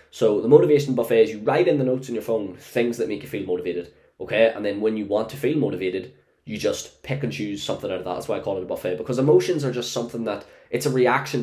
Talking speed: 280 wpm